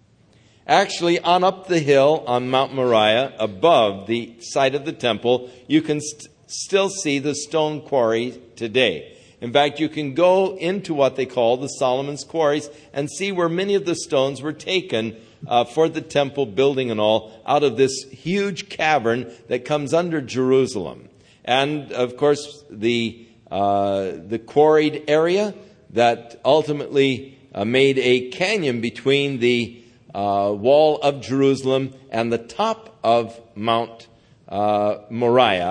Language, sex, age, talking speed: English, male, 50-69, 145 wpm